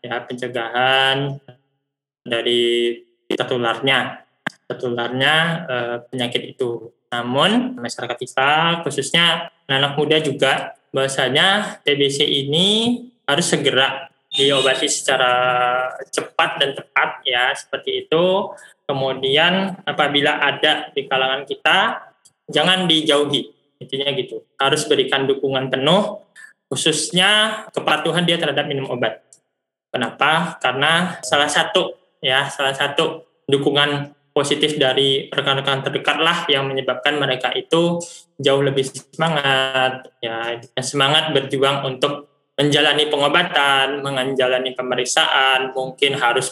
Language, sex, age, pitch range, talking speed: Indonesian, male, 20-39, 130-155 Hz, 100 wpm